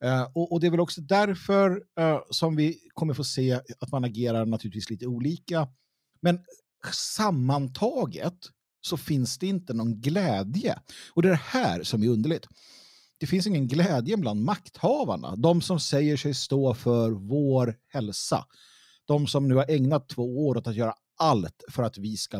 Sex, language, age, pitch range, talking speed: male, Swedish, 50-69, 120-175 Hz, 165 wpm